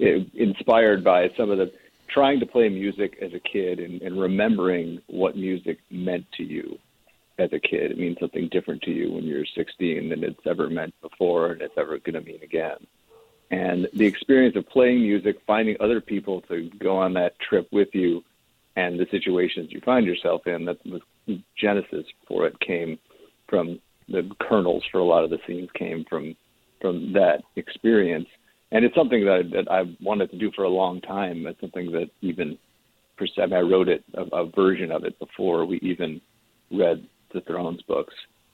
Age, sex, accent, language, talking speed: 50-69, male, American, English, 185 wpm